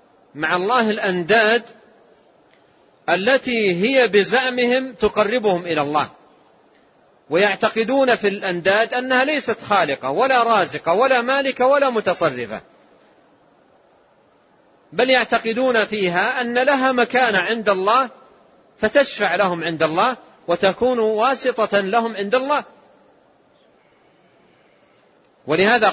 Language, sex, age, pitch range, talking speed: Arabic, male, 40-59, 175-235 Hz, 90 wpm